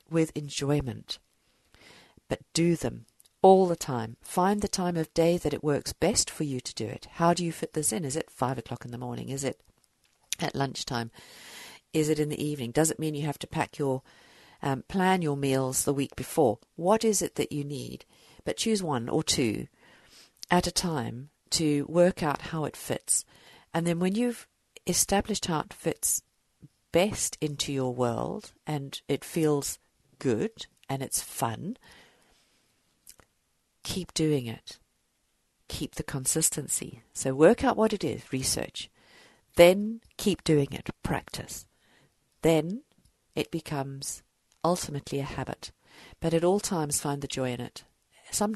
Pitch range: 130-165 Hz